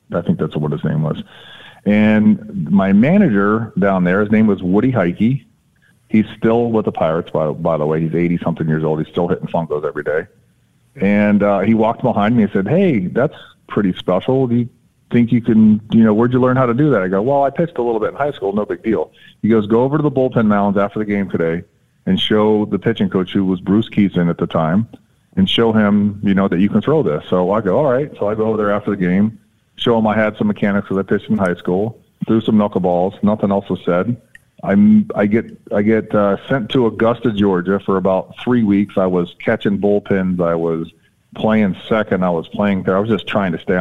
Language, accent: English, American